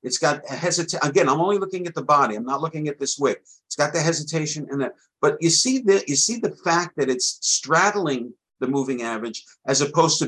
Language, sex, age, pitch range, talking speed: English, male, 50-69, 130-180 Hz, 235 wpm